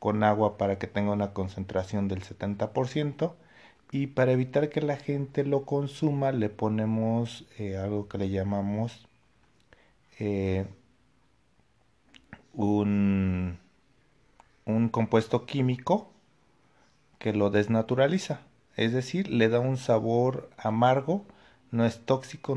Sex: male